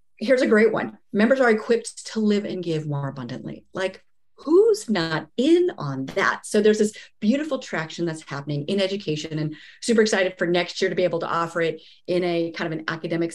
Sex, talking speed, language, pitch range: female, 205 wpm, English, 165-215 Hz